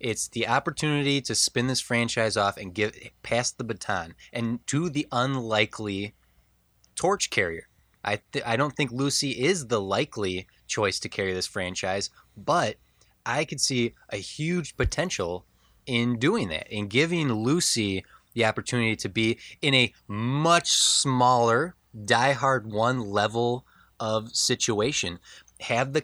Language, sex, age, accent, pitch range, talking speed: English, male, 20-39, American, 105-140 Hz, 140 wpm